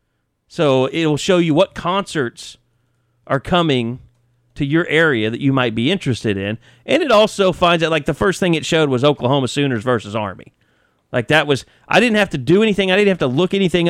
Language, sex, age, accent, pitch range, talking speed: English, male, 30-49, American, 120-160 Hz, 210 wpm